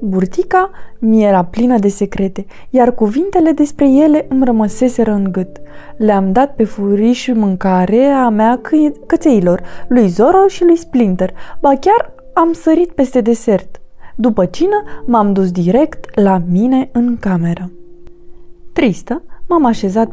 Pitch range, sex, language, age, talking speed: 200-305 Hz, female, Romanian, 20-39, 135 wpm